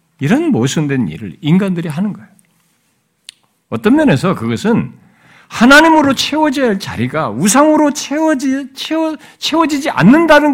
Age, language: 50-69, Korean